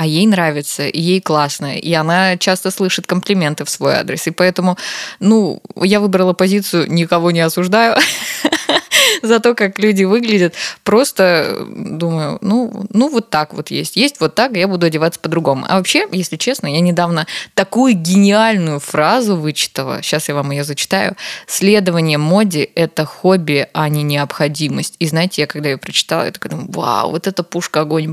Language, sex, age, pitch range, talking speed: Russian, female, 20-39, 165-200 Hz, 165 wpm